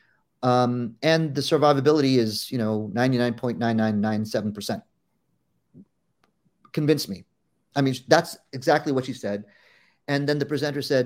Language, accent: English, American